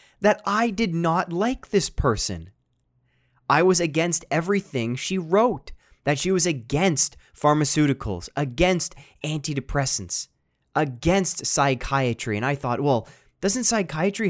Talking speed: 120 wpm